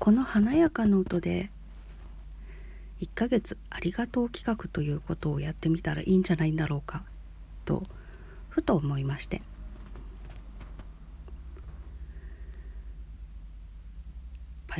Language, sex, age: Japanese, female, 40-59